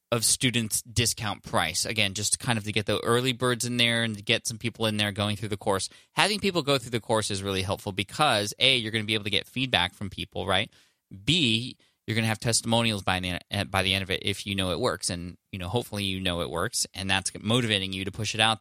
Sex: male